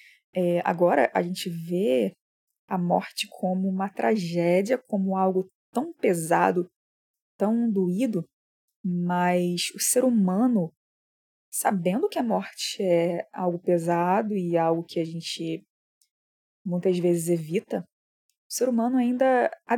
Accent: Brazilian